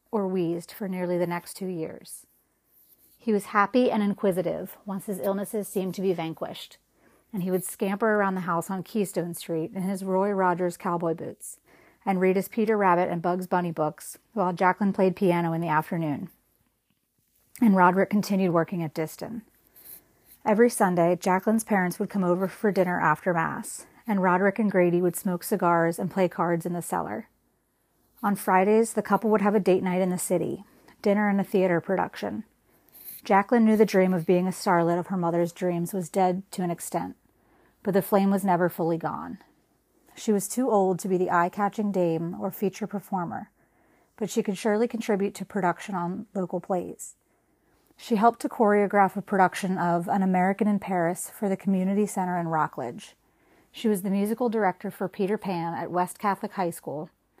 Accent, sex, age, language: American, female, 30-49, English